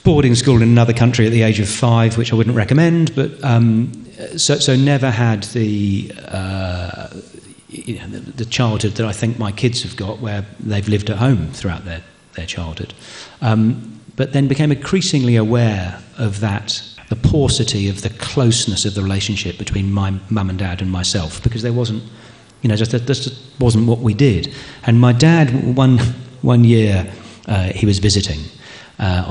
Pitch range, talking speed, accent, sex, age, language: 95-115 Hz, 180 wpm, British, male, 40-59, English